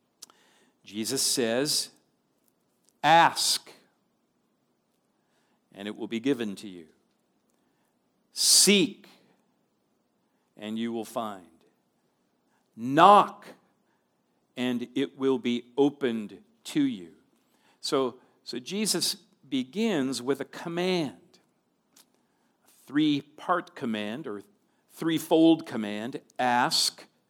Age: 50-69